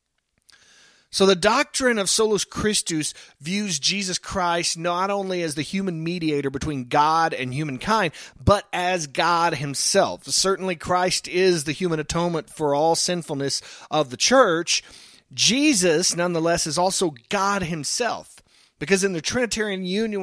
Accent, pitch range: American, 160-205 Hz